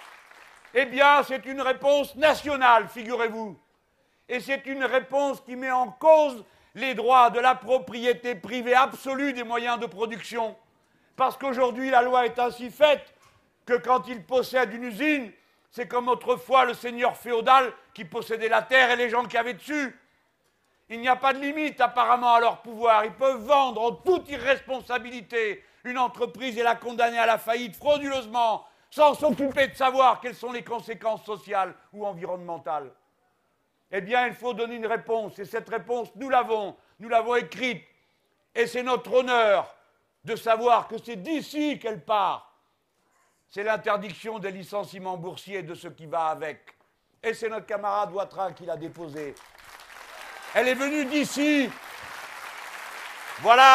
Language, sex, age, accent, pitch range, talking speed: French, male, 60-79, French, 225-260 Hz, 155 wpm